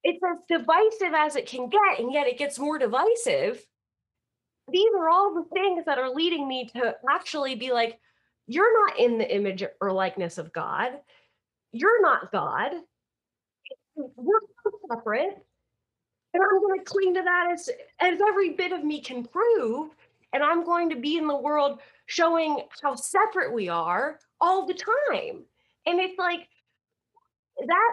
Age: 30-49